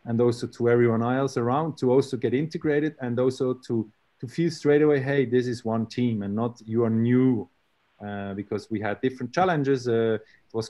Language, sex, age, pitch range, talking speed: English, male, 30-49, 115-135 Hz, 200 wpm